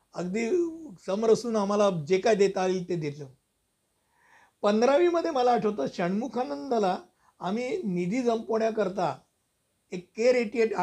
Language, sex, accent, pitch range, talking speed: Hindi, male, native, 180-225 Hz, 85 wpm